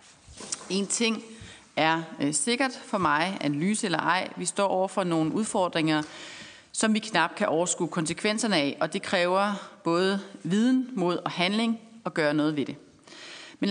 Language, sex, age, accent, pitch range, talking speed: Danish, female, 30-49, native, 175-230 Hz, 160 wpm